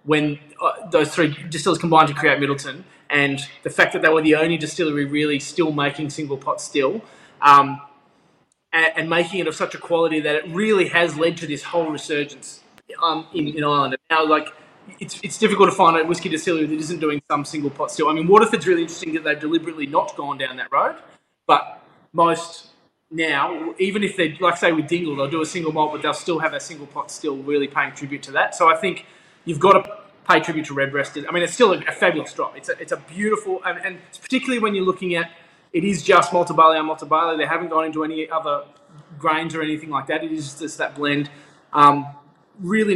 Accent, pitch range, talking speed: Australian, 145-175 Hz, 220 wpm